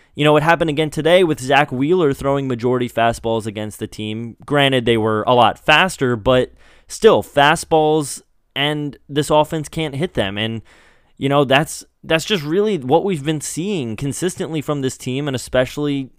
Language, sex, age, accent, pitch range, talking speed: English, male, 20-39, American, 120-165 Hz, 175 wpm